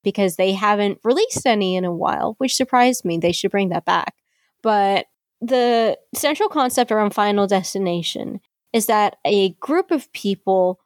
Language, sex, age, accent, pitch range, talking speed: English, female, 20-39, American, 180-220 Hz, 160 wpm